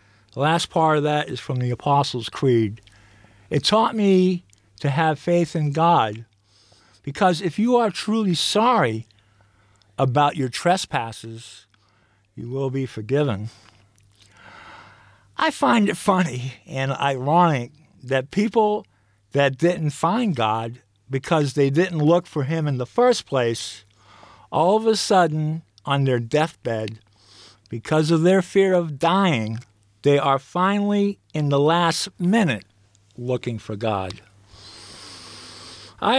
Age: 50-69